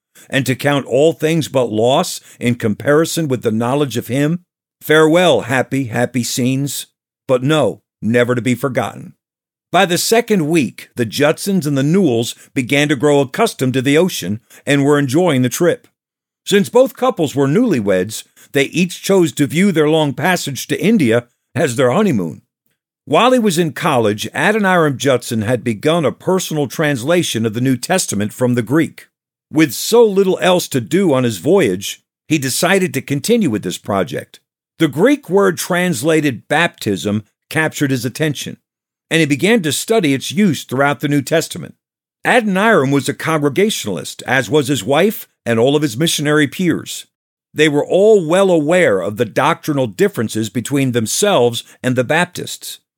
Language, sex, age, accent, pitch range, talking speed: English, male, 50-69, American, 130-180 Hz, 165 wpm